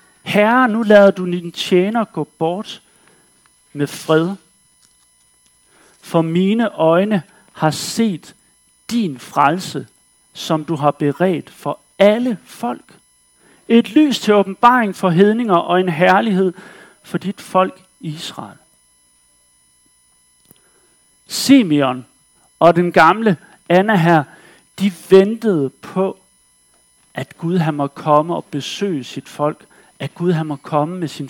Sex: male